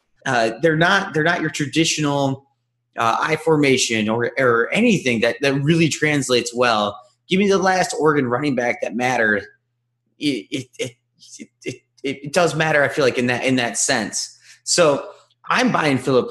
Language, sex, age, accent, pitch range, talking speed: English, male, 30-49, American, 120-170 Hz, 175 wpm